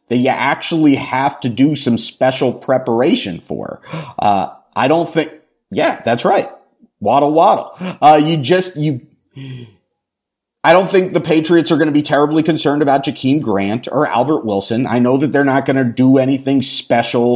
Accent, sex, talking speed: American, male, 175 wpm